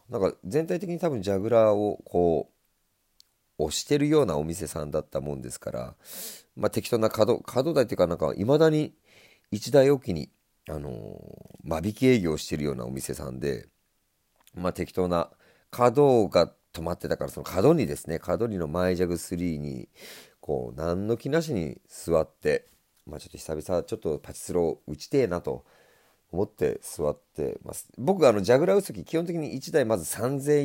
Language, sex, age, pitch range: Japanese, male, 40-59, 80-135 Hz